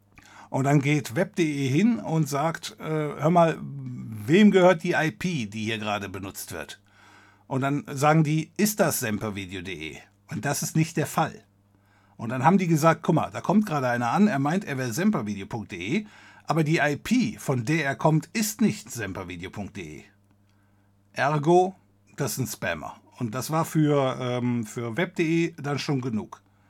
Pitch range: 105-160 Hz